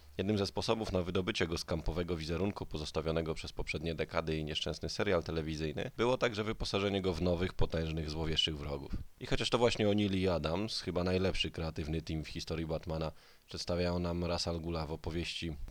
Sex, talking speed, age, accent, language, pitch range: male, 175 wpm, 20-39, native, Polish, 80-95 Hz